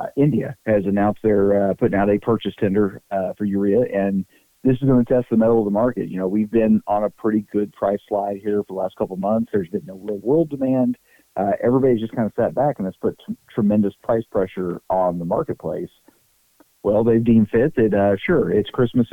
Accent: American